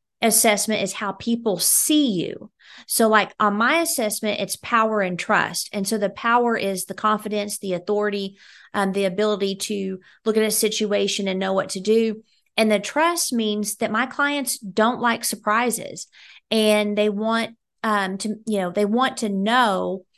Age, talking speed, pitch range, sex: 30-49, 170 wpm, 195-230 Hz, female